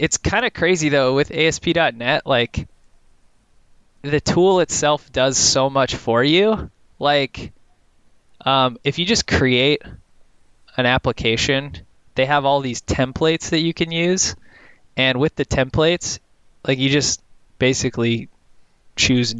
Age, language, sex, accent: 20-39, English, male, American